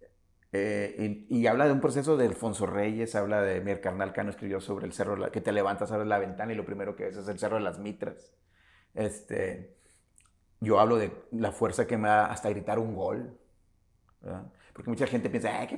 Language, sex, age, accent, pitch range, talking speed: Spanish, male, 40-59, Mexican, 105-125 Hz, 210 wpm